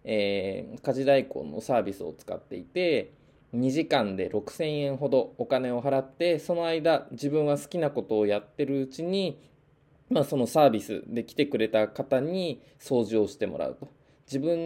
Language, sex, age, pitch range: Japanese, male, 20-39, 120-165 Hz